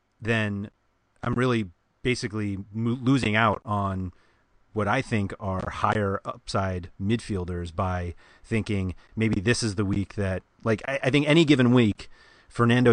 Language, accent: English, American